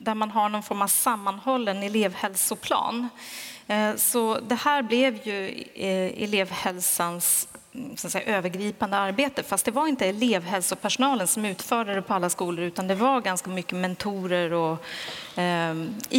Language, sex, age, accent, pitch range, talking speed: Swedish, female, 30-49, native, 185-245 Hz, 140 wpm